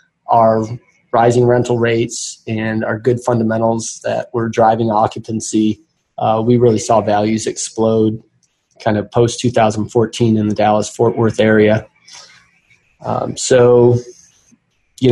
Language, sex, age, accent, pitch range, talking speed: English, male, 20-39, American, 115-130 Hz, 125 wpm